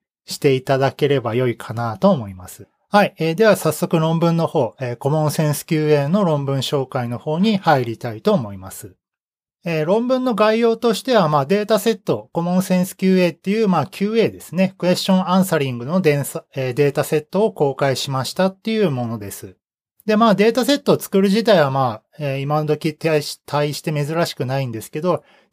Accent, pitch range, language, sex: native, 135-200 Hz, Japanese, male